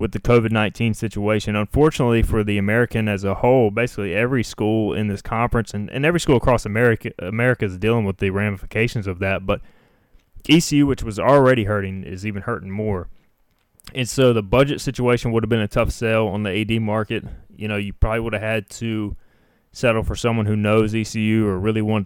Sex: male